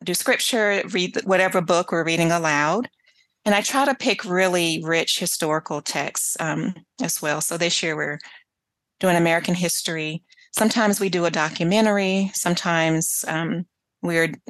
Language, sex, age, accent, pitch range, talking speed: English, female, 30-49, American, 160-200 Hz, 145 wpm